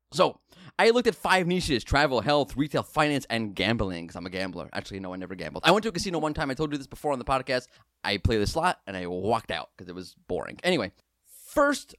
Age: 30-49